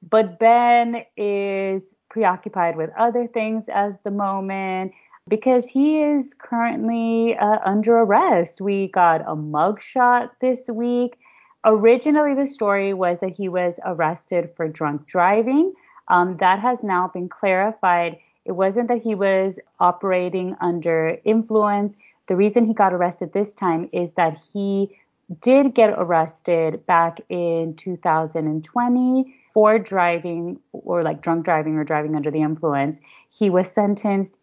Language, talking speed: English, 135 wpm